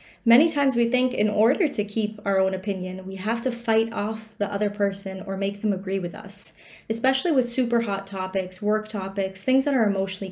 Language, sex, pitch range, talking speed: English, female, 195-225 Hz, 210 wpm